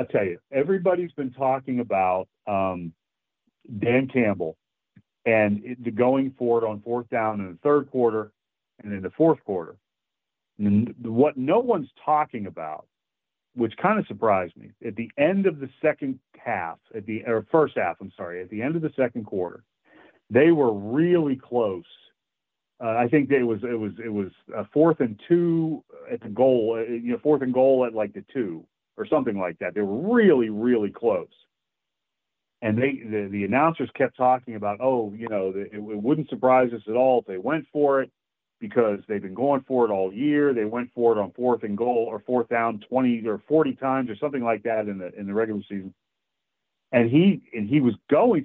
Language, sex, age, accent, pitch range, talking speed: English, male, 40-59, American, 105-135 Hz, 200 wpm